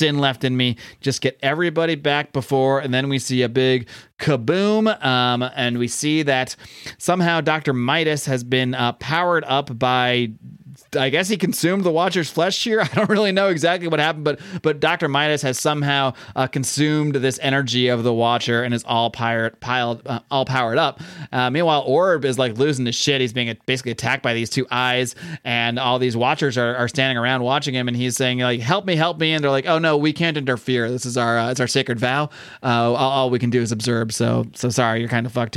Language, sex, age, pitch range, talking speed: English, male, 30-49, 120-150 Hz, 220 wpm